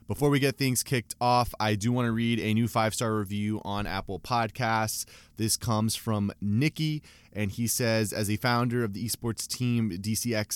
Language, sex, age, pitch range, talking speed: English, male, 20-39, 100-115 Hz, 190 wpm